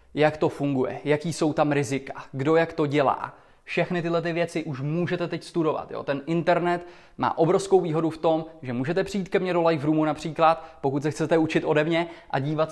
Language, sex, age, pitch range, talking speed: Czech, male, 20-39, 145-170 Hz, 205 wpm